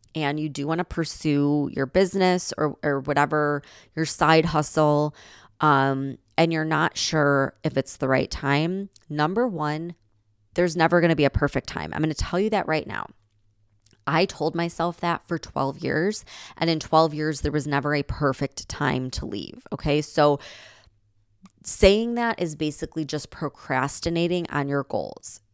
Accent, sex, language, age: American, female, English, 20-39